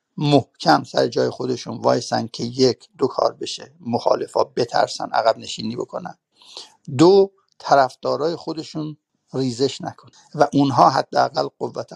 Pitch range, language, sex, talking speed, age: 125-165 Hz, Persian, male, 130 wpm, 60-79